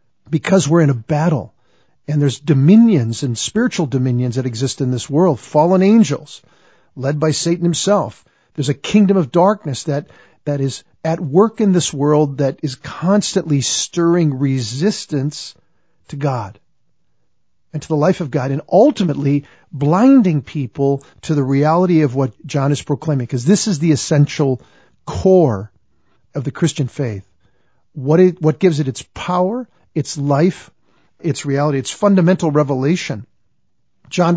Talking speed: 150 wpm